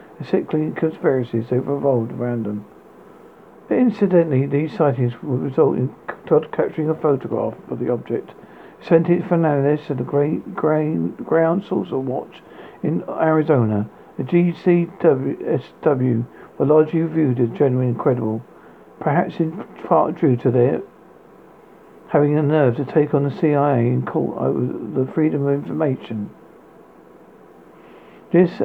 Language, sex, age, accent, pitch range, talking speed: English, male, 50-69, British, 125-160 Hz, 135 wpm